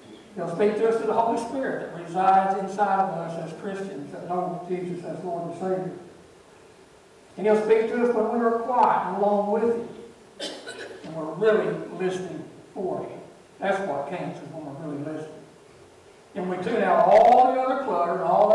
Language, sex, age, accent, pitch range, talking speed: English, male, 60-79, American, 175-210 Hz, 185 wpm